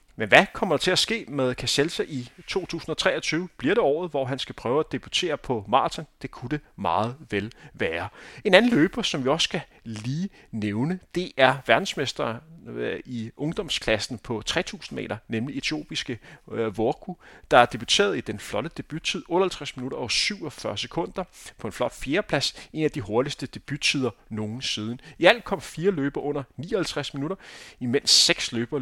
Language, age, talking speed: Danish, 30-49, 170 wpm